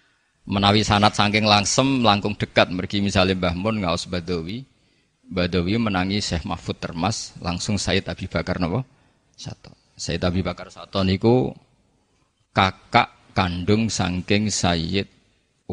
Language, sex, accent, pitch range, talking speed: Indonesian, male, native, 95-110 Hz, 115 wpm